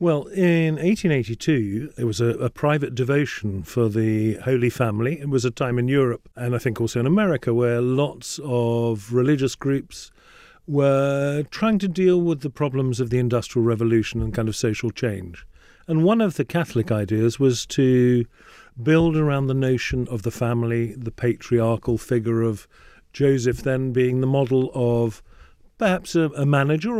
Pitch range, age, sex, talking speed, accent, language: 120-155 Hz, 40-59, male, 165 wpm, British, English